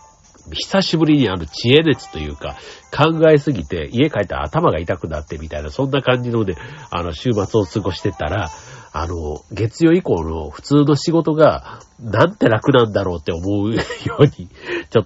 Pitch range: 90-140 Hz